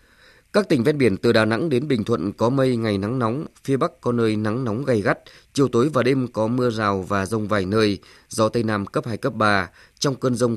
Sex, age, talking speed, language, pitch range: male, 20-39, 250 wpm, Vietnamese, 100-130 Hz